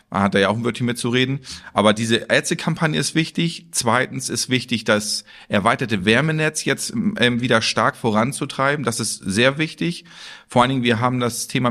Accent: German